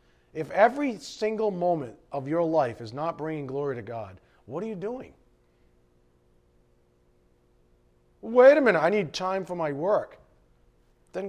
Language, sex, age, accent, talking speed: English, male, 40-59, American, 145 wpm